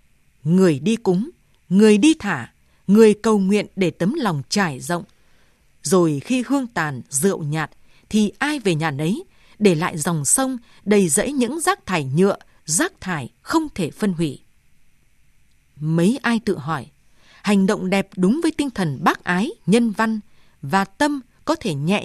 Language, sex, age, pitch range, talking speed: Vietnamese, female, 20-39, 175-235 Hz, 165 wpm